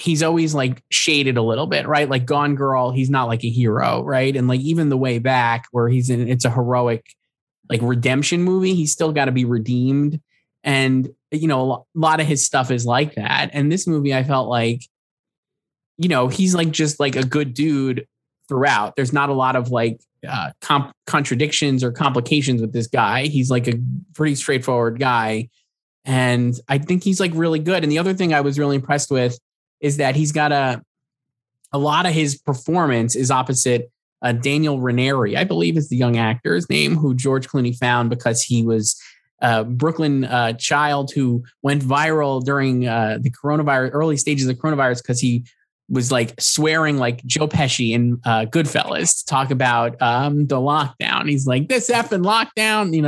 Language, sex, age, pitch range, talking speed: English, male, 20-39, 125-150 Hz, 190 wpm